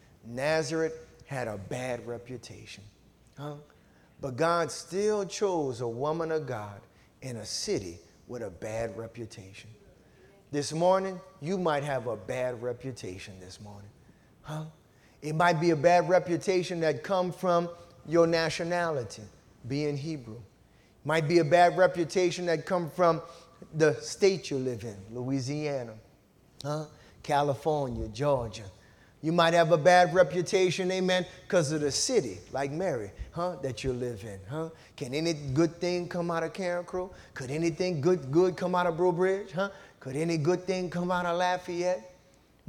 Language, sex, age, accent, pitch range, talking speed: English, male, 30-49, American, 130-180 Hz, 150 wpm